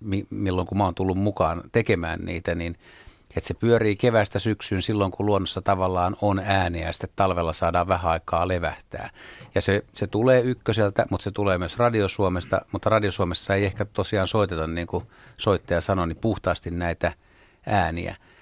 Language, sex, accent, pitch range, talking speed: Finnish, male, native, 95-110 Hz, 175 wpm